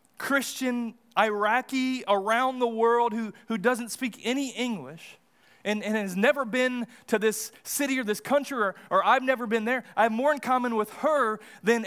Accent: American